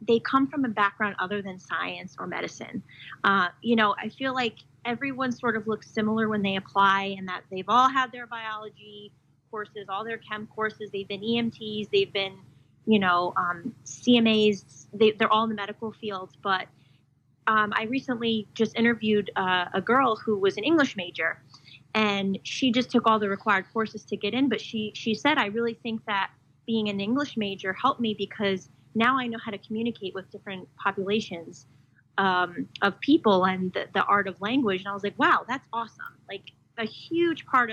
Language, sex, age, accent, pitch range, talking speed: English, female, 30-49, American, 190-235 Hz, 190 wpm